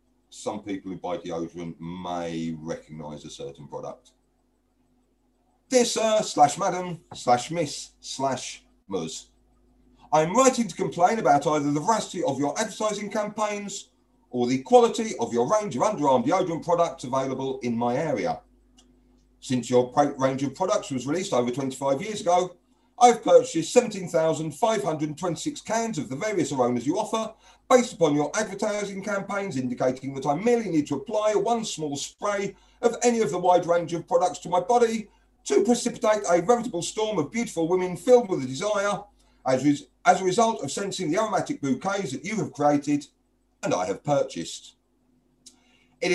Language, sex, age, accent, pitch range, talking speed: English, male, 40-59, British, 135-215 Hz, 160 wpm